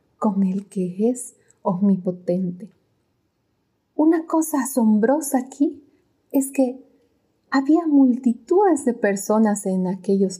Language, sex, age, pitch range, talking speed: Spanish, female, 30-49, 195-270 Hz, 100 wpm